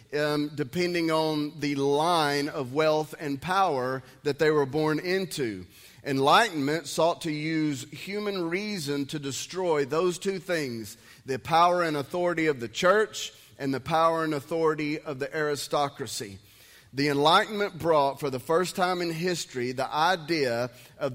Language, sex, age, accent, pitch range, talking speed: English, male, 30-49, American, 135-175 Hz, 150 wpm